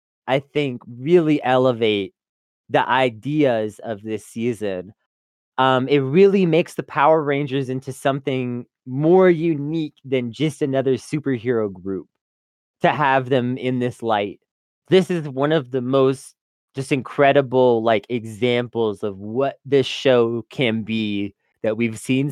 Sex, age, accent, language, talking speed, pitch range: male, 20-39, American, English, 135 wpm, 120-160 Hz